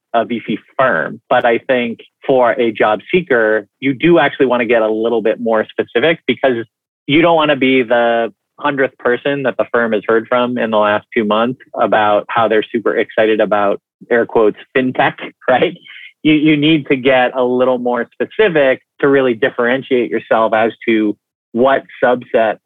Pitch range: 110-130 Hz